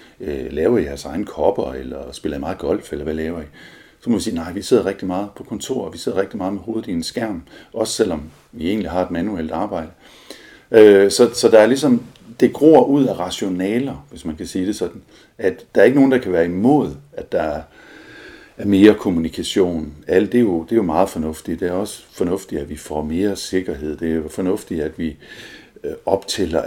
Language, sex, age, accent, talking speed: Danish, male, 50-69, native, 205 wpm